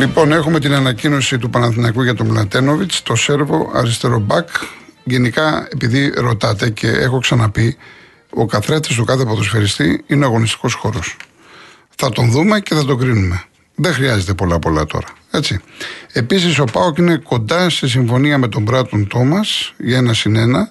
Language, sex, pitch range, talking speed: Greek, male, 115-155 Hz, 150 wpm